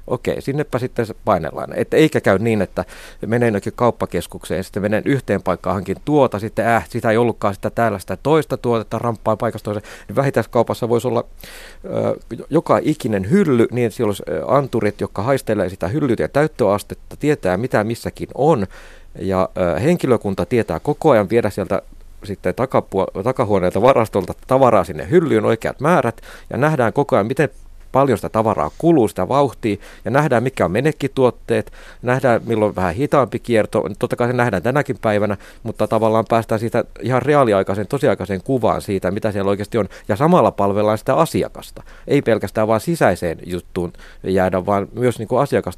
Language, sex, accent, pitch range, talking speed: Finnish, male, native, 100-125 Hz, 165 wpm